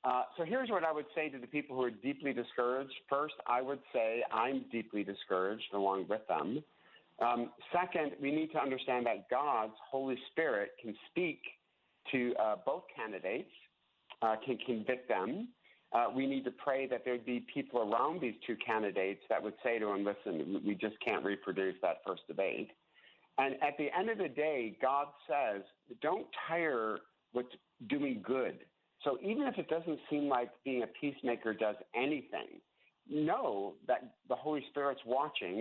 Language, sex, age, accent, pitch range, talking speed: English, male, 50-69, American, 120-150 Hz, 170 wpm